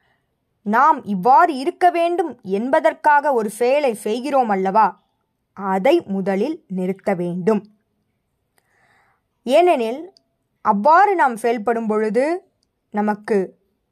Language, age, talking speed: Tamil, 20-39, 80 wpm